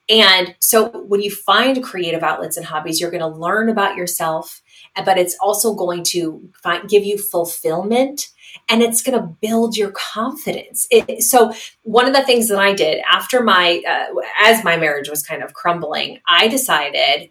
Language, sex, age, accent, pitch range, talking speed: English, female, 30-49, American, 175-220 Hz, 180 wpm